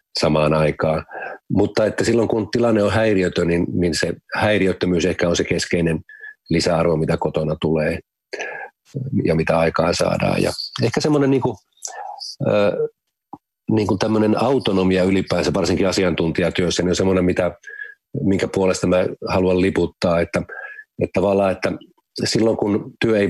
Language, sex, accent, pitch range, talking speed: Finnish, male, native, 85-110 Hz, 125 wpm